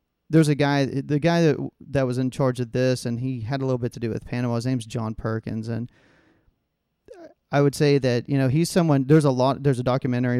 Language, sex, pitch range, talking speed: English, male, 120-135 Hz, 235 wpm